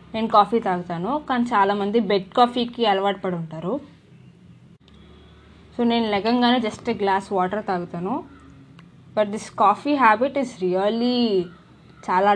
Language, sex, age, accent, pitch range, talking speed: Telugu, female, 20-39, native, 185-235 Hz, 115 wpm